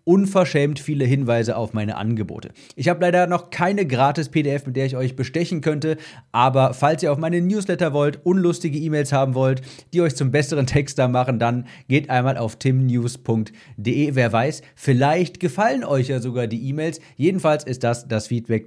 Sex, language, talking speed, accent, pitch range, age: male, German, 175 wpm, German, 120-155 Hz, 40-59